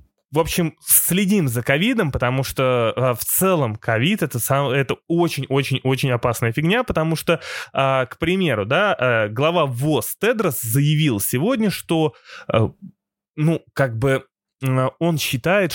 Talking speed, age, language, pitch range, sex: 125 wpm, 20-39, Russian, 115-160 Hz, male